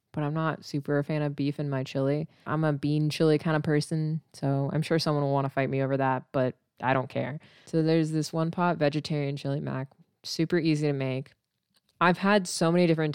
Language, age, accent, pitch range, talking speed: English, 20-39, American, 145-175 Hz, 230 wpm